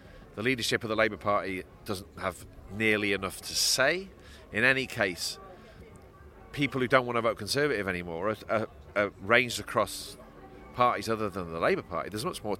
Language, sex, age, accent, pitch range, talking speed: English, male, 40-59, British, 95-120 Hz, 175 wpm